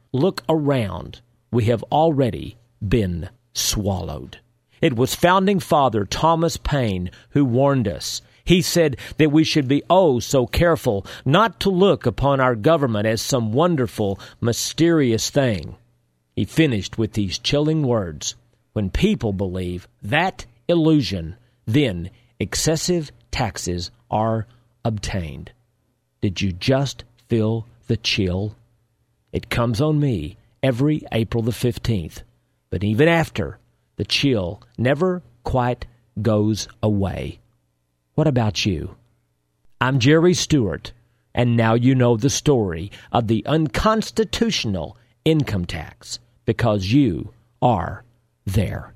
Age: 50-69